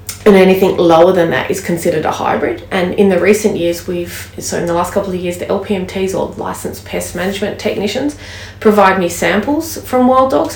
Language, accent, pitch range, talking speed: English, Australian, 170-205 Hz, 200 wpm